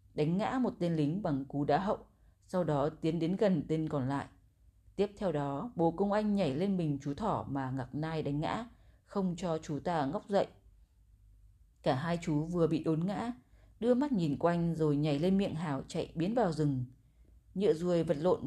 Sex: female